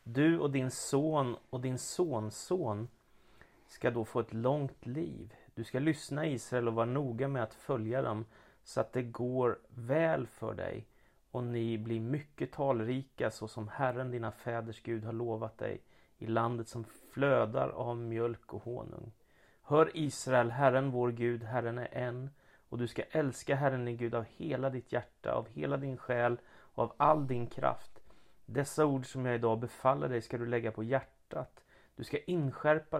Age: 30-49